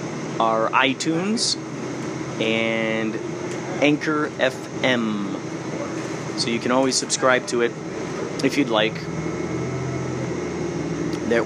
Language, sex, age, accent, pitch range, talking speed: English, male, 30-49, American, 120-165 Hz, 85 wpm